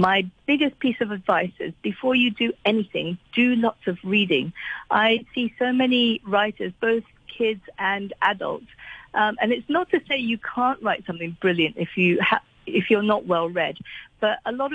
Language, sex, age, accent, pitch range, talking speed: English, female, 50-69, British, 190-235 Hz, 175 wpm